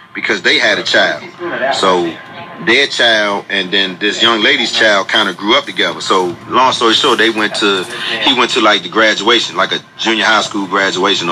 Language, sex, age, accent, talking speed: English, male, 30-49, American, 200 wpm